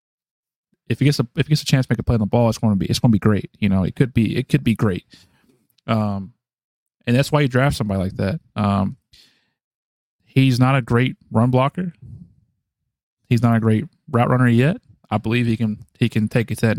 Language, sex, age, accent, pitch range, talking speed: English, male, 20-39, American, 110-130 Hz, 240 wpm